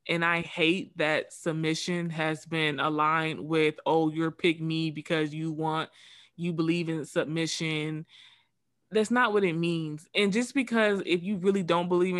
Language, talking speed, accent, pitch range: English, 160 wpm, American, 160-185 Hz